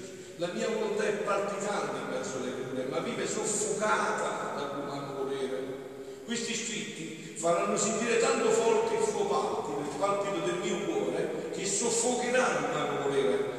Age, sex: 50-69, male